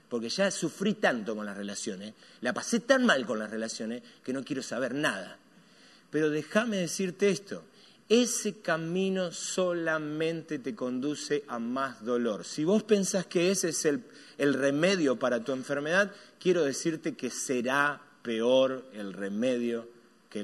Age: 30-49